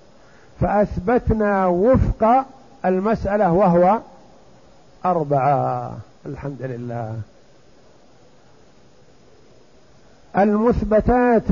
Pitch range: 150-210 Hz